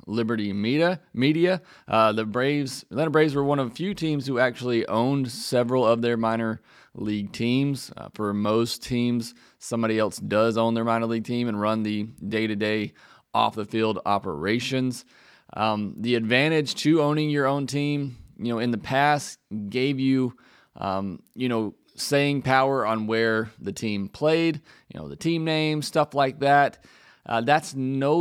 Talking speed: 165 wpm